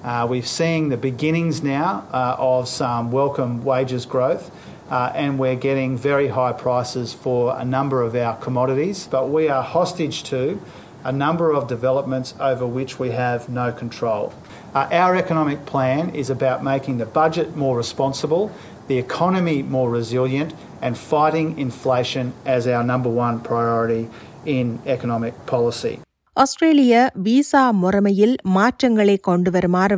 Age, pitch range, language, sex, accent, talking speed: 40-59, 130-205 Hz, Tamil, male, Australian, 140 wpm